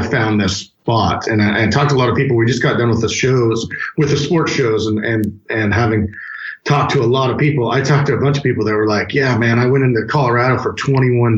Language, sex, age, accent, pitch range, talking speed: English, male, 40-59, American, 110-135 Hz, 270 wpm